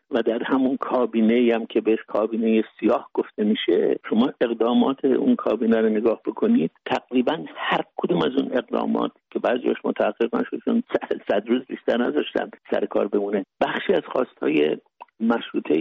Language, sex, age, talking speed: Persian, male, 60-79, 150 wpm